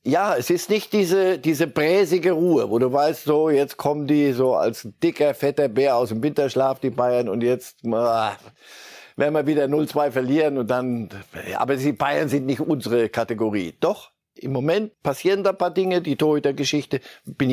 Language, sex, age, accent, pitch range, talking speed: German, male, 60-79, German, 125-170 Hz, 180 wpm